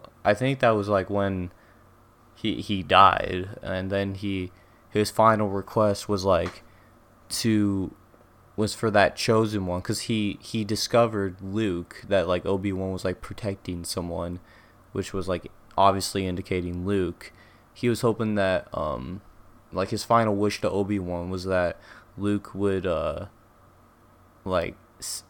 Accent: American